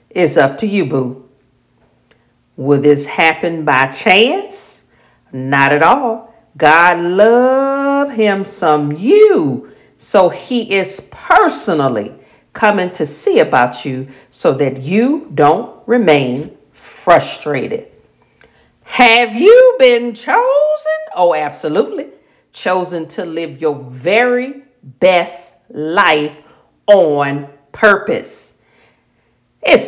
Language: English